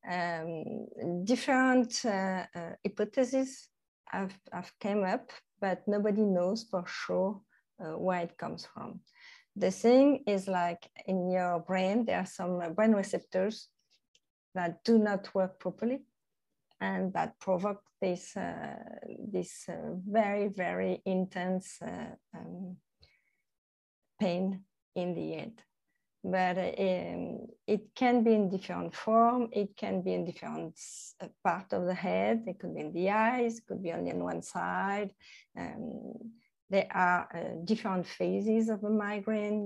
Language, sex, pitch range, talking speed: English, female, 180-225 Hz, 135 wpm